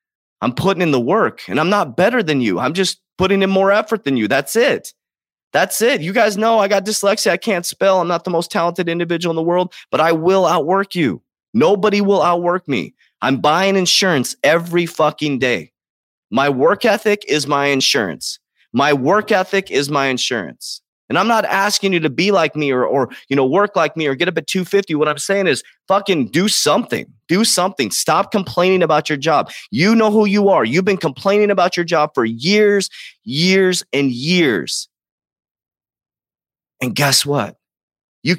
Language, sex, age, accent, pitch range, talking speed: English, male, 30-49, American, 145-195 Hz, 190 wpm